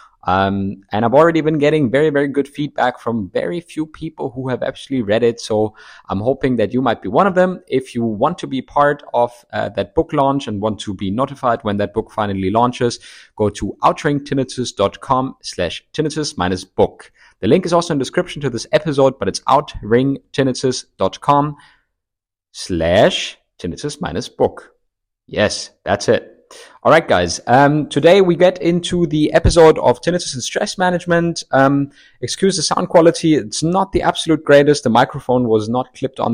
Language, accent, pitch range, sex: English, German, 115-155 Hz, male